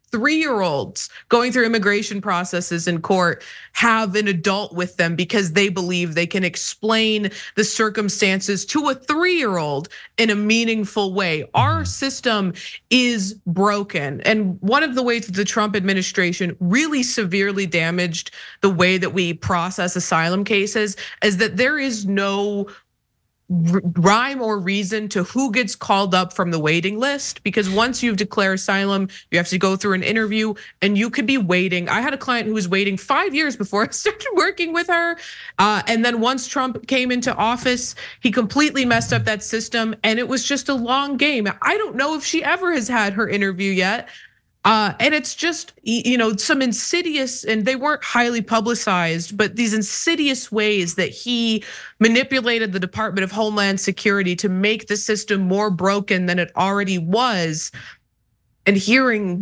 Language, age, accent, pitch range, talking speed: English, 20-39, American, 190-240 Hz, 170 wpm